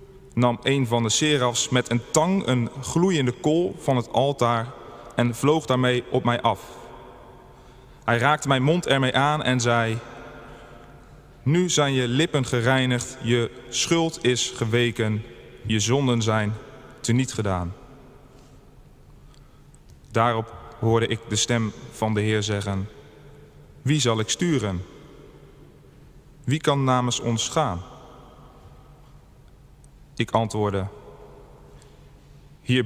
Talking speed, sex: 115 wpm, male